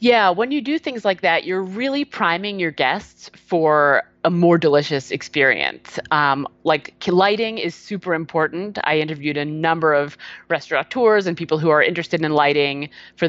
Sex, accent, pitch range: female, American, 155-210 Hz